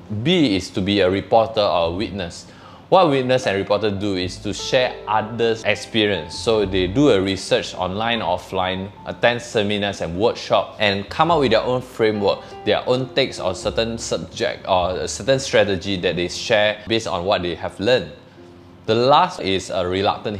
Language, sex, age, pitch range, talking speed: English, male, 20-39, 90-115 Hz, 175 wpm